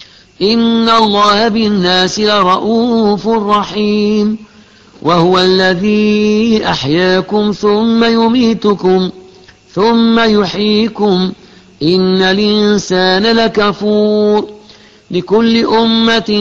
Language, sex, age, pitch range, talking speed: Arabic, male, 50-69, 185-225 Hz, 60 wpm